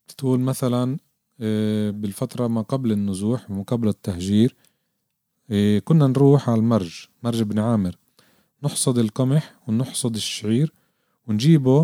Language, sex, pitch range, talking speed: Arabic, male, 110-140 Hz, 110 wpm